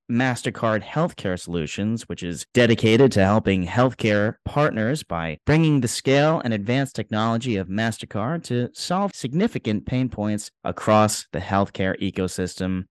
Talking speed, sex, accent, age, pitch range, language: 130 wpm, male, American, 30-49, 100-125 Hz, English